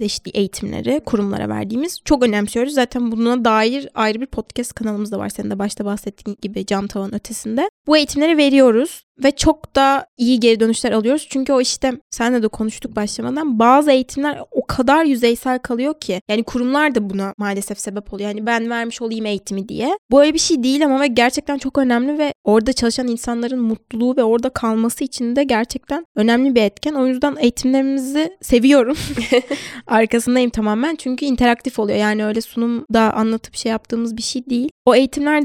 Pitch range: 210-265 Hz